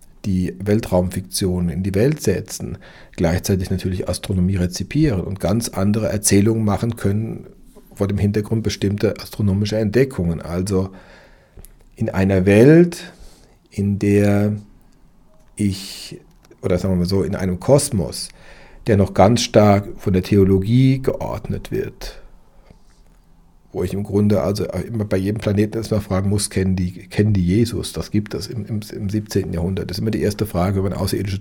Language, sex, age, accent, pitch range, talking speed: German, male, 50-69, German, 95-110 Hz, 155 wpm